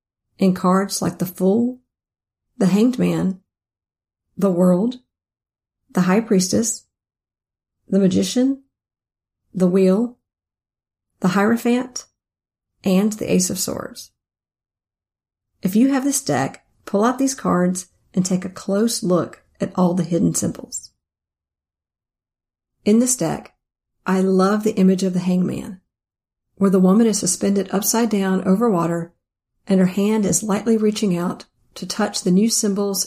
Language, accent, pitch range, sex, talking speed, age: English, American, 165-210 Hz, female, 135 wpm, 40-59